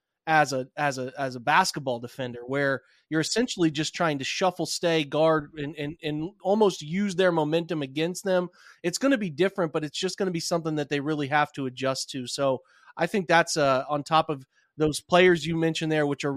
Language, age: English, 30-49